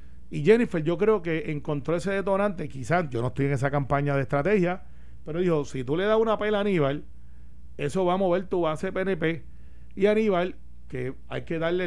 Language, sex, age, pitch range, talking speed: Spanish, male, 40-59, 145-195 Hz, 200 wpm